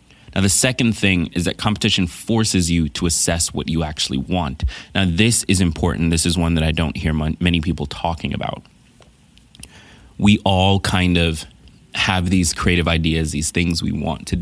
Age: 20-39